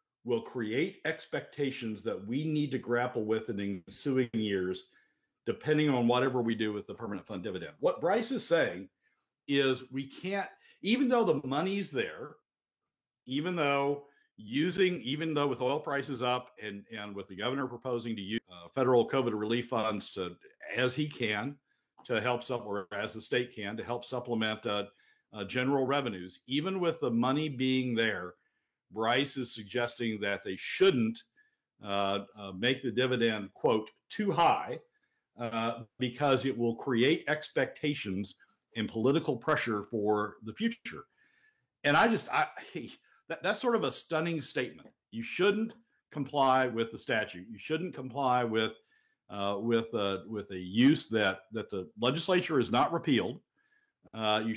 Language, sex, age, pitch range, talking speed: English, male, 50-69, 110-145 Hz, 160 wpm